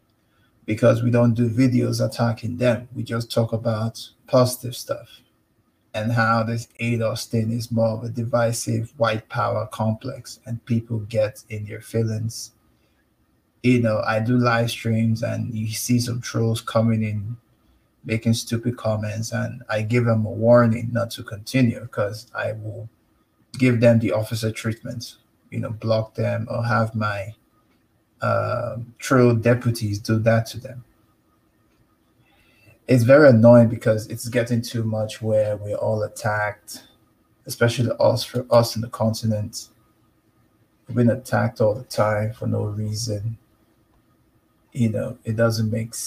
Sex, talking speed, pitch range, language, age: male, 145 wpm, 110-120 Hz, English, 20-39